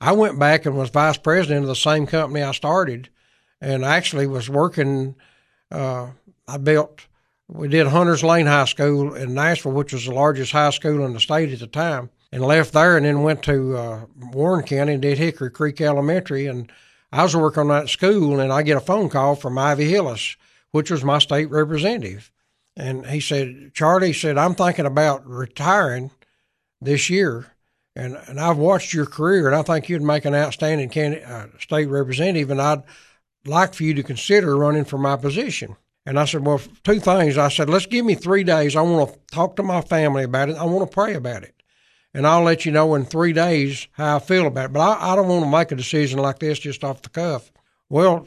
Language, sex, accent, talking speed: English, male, American, 215 wpm